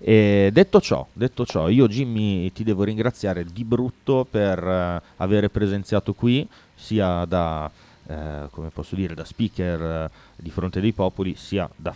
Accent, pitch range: native, 90-115 Hz